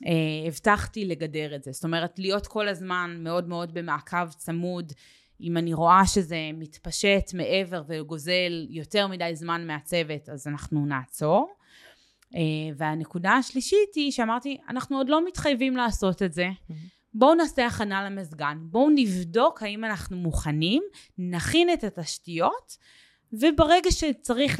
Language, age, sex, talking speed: Hebrew, 20-39, female, 130 wpm